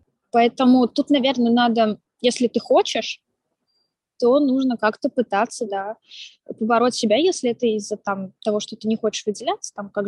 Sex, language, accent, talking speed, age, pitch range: female, Russian, native, 155 wpm, 20-39, 195-235 Hz